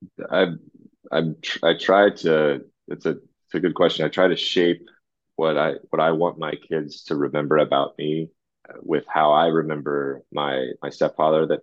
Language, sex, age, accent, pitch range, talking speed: English, male, 30-49, American, 70-75 Hz, 180 wpm